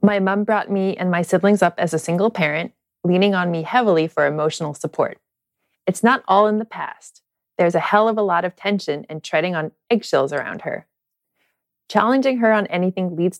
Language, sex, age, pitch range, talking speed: English, female, 20-39, 165-205 Hz, 195 wpm